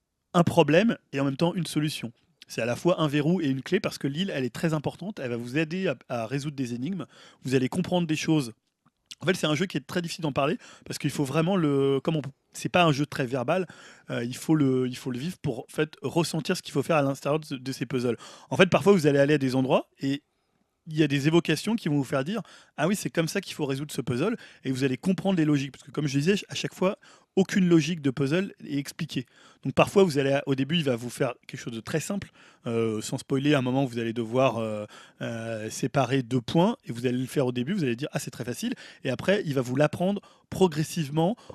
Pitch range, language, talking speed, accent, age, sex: 135-170 Hz, French, 275 wpm, French, 20-39, male